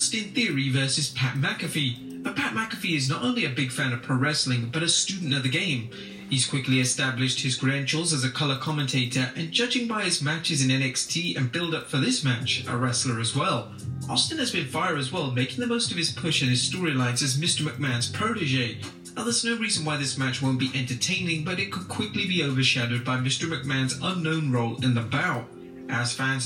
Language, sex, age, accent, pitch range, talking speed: English, male, 30-49, British, 130-160 Hz, 215 wpm